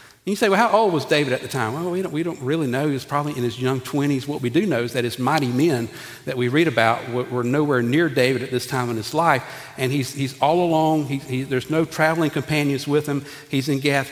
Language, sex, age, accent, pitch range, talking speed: English, male, 50-69, American, 120-140 Hz, 270 wpm